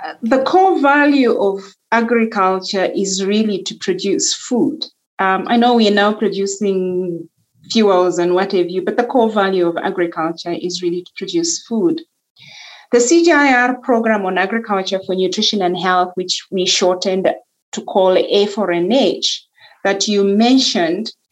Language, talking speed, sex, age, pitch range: English, 145 wpm, female, 30-49, 185-245 Hz